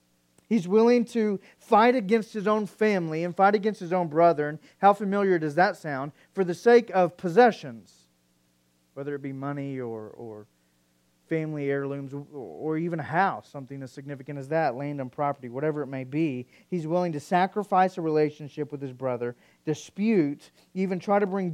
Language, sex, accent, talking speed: English, male, American, 180 wpm